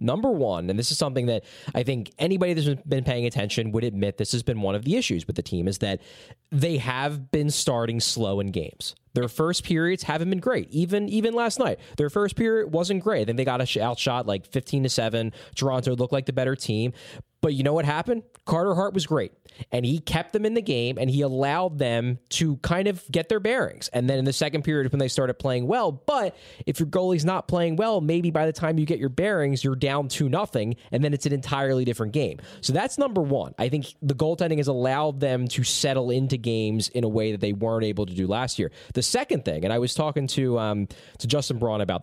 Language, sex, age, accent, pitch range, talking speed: English, male, 20-39, American, 120-160 Hz, 240 wpm